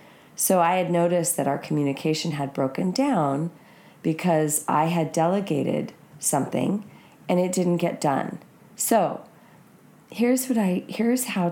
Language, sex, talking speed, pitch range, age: English, female, 135 wpm, 160-200 Hz, 40-59